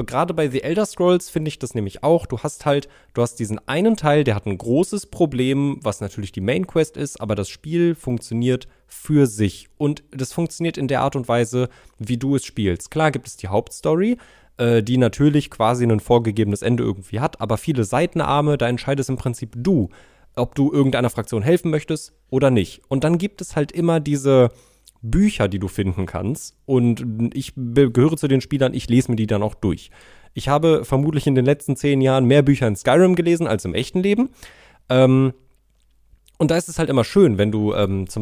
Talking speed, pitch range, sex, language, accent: 205 wpm, 110-145 Hz, male, German, German